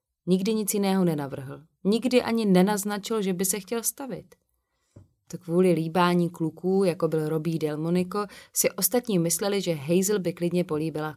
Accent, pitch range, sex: native, 160-195 Hz, female